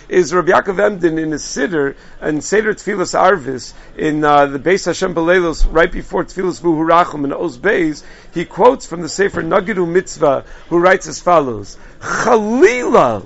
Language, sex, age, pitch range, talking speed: English, male, 50-69, 165-210 Hz, 165 wpm